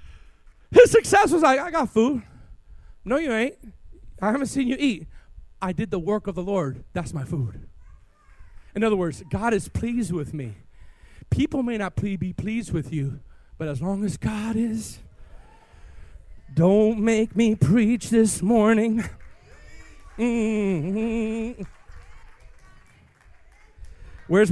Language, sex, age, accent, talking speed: English, male, 40-59, American, 135 wpm